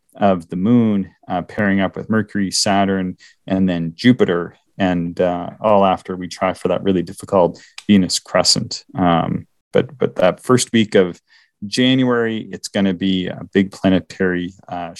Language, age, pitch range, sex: English, 30-49, 90-110 Hz, male